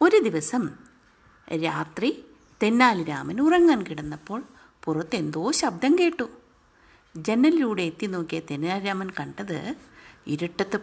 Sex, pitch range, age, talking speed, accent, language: female, 210-310 Hz, 50-69, 85 wpm, native, Malayalam